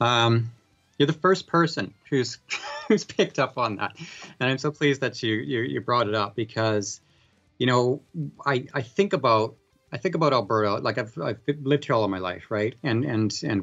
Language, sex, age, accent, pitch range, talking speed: English, male, 30-49, American, 105-130 Hz, 205 wpm